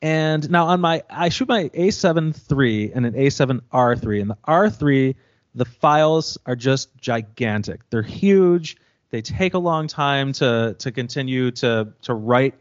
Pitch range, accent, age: 120-150 Hz, American, 30-49